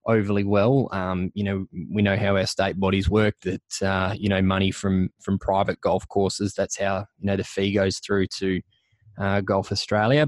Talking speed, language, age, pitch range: 200 wpm, English, 20-39, 95-110 Hz